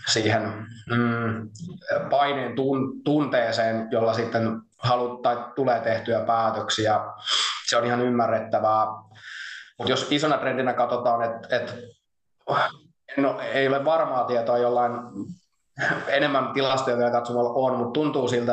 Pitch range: 110-130 Hz